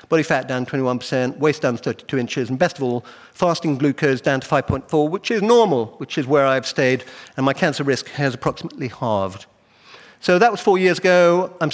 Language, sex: English, male